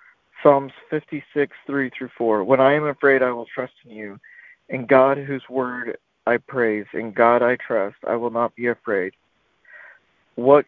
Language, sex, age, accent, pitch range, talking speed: English, male, 50-69, American, 115-140 Hz, 155 wpm